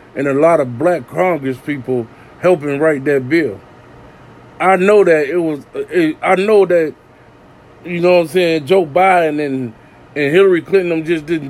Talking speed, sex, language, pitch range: 170 wpm, male, English, 155-190 Hz